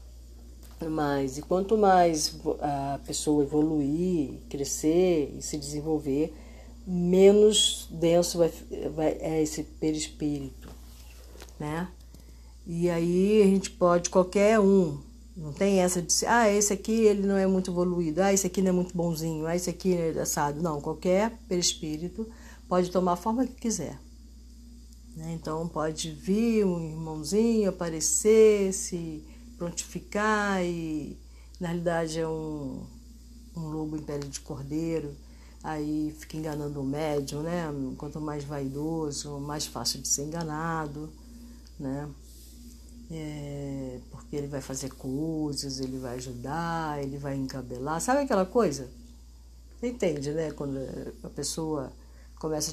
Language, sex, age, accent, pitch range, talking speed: Portuguese, female, 50-69, Brazilian, 140-180 Hz, 130 wpm